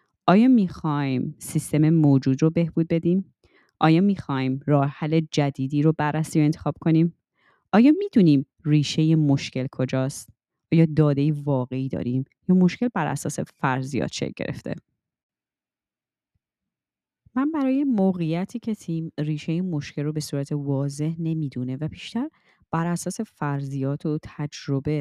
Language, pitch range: Persian, 135-170 Hz